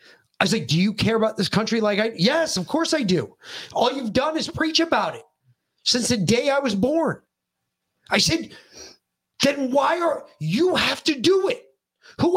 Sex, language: male, English